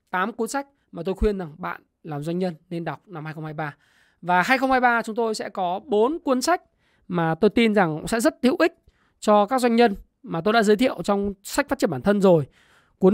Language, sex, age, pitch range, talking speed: Vietnamese, male, 20-39, 175-235 Hz, 225 wpm